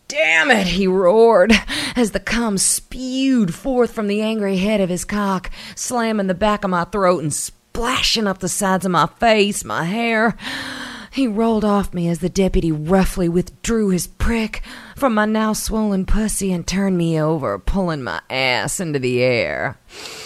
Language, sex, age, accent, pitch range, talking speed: English, female, 40-59, American, 160-225 Hz, 170 wpm